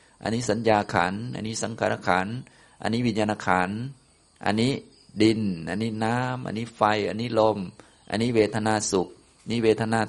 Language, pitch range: Thai, 95-115 Hz